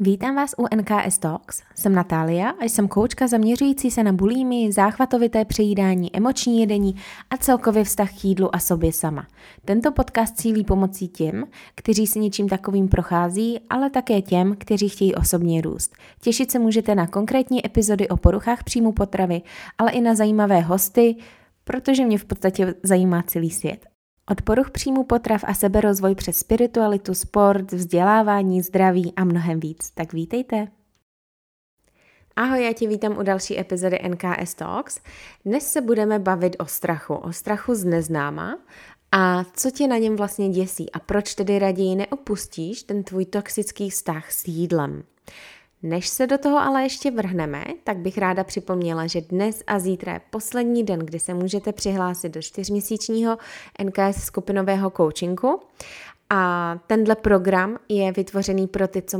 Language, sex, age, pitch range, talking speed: Czech, female, 20-39, 180-220 Hz, 155 wpm